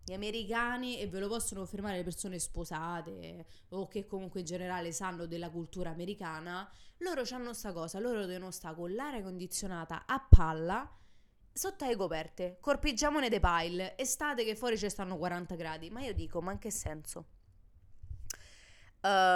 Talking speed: 160 wpm